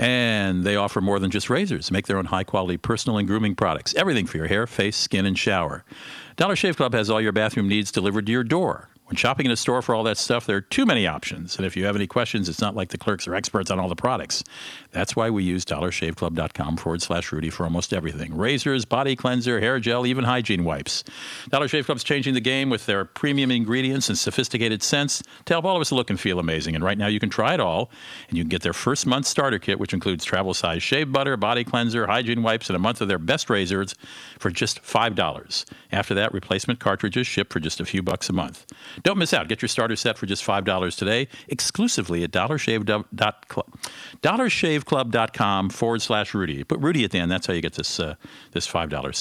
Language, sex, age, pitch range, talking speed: English, male, 50-69, 95-130 Hz, 225 wpm